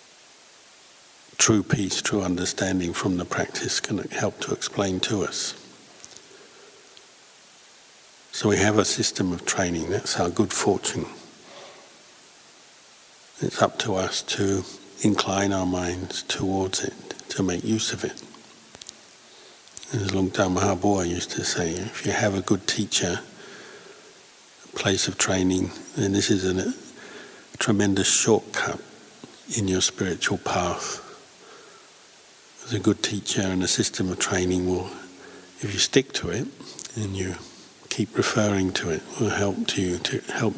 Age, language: 60-79, English